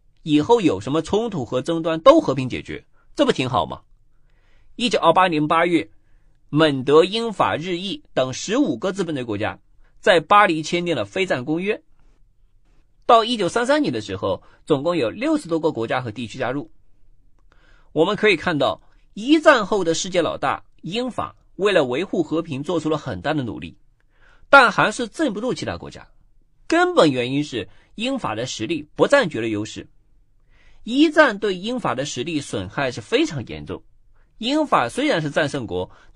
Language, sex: Chinese, male